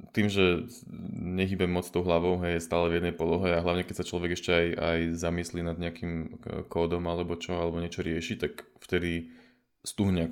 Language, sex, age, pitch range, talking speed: Slovak, male, 20-39, 85-95 Hz, 180 wpm